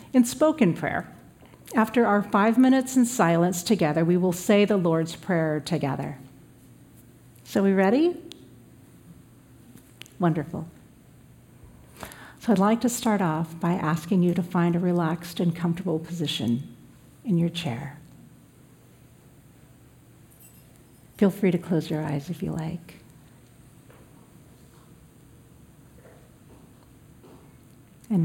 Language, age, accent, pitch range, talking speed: English, 50-69, American, 135-180 Hz, 110 wpm